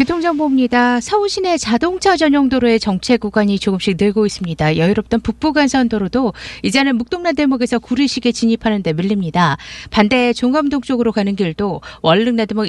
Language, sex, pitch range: Korean, female, 205-295 Hz